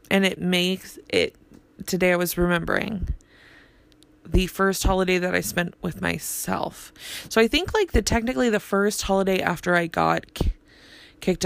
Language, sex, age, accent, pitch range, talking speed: English, female, 20-39, American, 150-195 Hz, 150 wpm